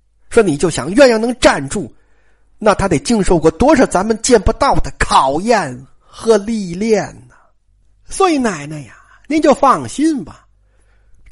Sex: male